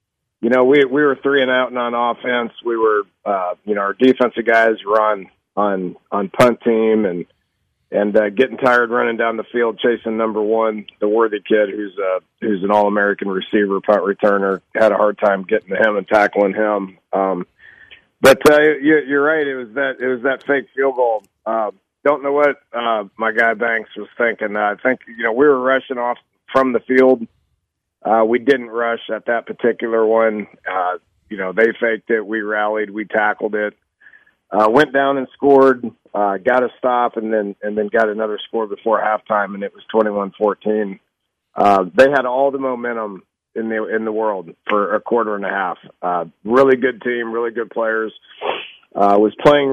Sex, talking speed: male, 200 wpm